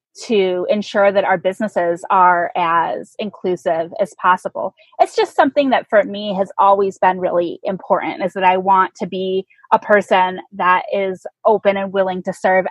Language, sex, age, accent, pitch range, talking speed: English, female, 20-39, American, 185-255 Hz, 170 wpm